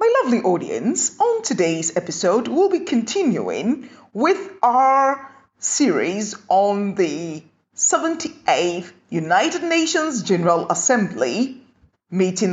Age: 30-49